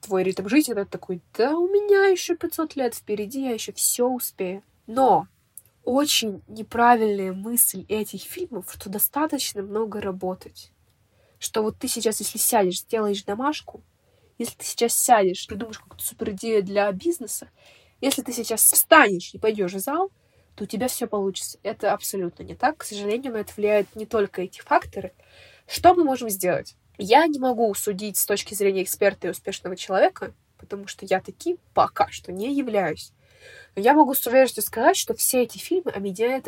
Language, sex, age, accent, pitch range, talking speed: Russian, female, 20-39, native, 195-260 Hz, 175 wpm